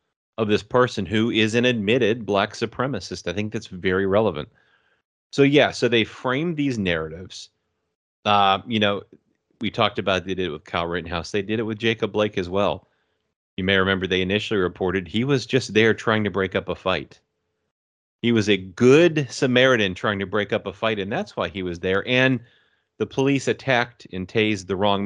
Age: 30-49